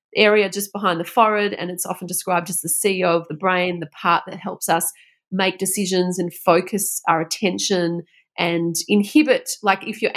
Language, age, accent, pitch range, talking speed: English, 30-49, Australian, 170-205 Hz, 185 wpm